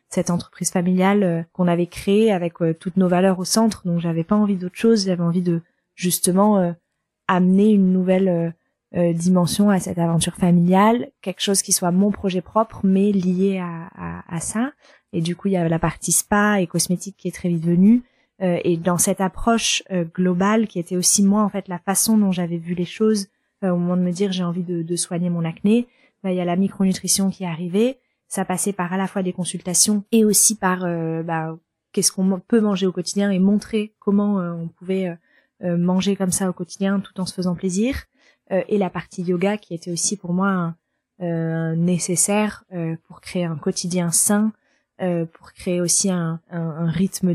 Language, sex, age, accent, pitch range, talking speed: French, female, 20-39, French, 175-200 Hz, 215 wpm